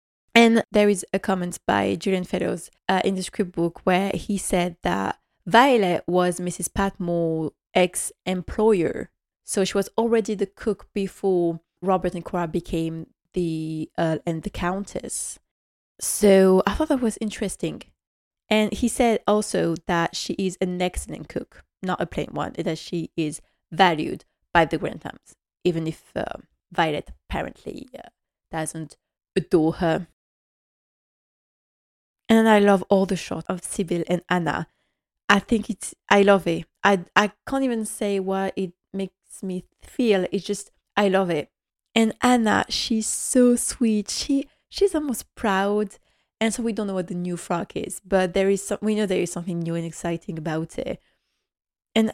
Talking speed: 160 wpm